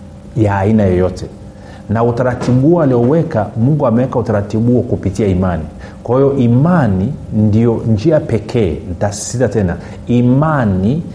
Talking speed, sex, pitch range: 115 wpm, male, 100-125 Hz